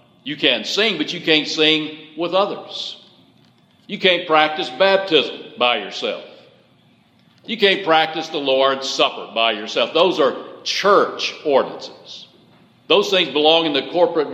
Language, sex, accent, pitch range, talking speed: English, male, American, 150-205 Hz, 140 wpm